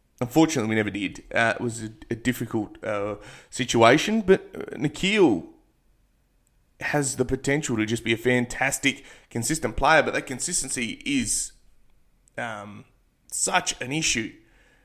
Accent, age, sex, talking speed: Australian, 20-39, male, 130 wpm